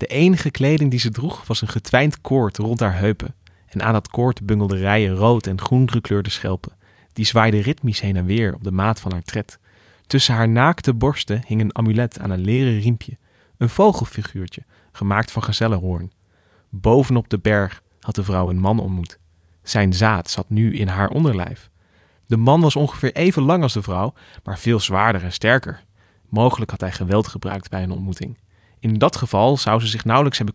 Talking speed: 195 wpm